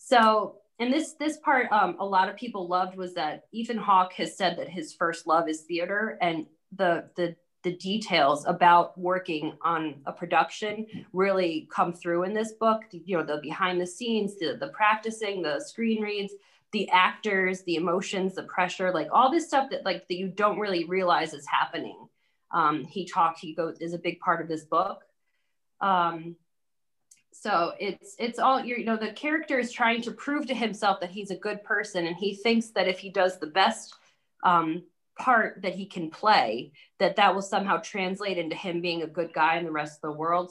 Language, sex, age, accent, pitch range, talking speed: English, female, 20-39, American, 170-220 Hz, 200 wpm